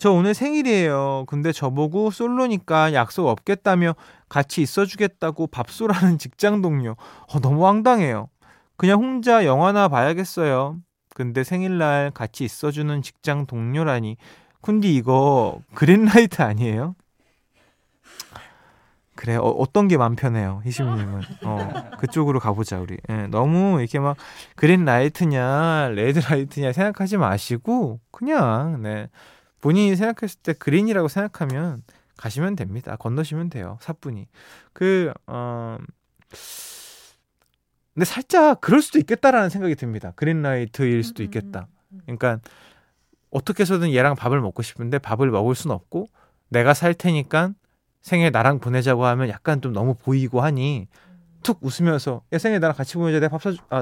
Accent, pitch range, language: native, 125-185 Hz, Korean